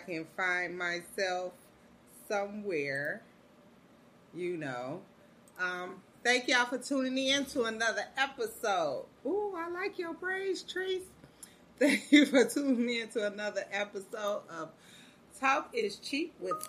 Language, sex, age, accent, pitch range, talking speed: English, female, 30-49, American, 180-265 Hz, 120 wpm